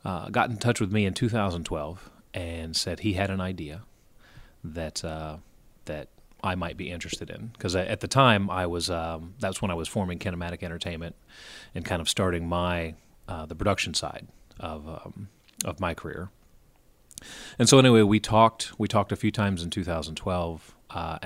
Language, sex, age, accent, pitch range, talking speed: English, male, 30-49, American, 80-100 Hz, 180 wpm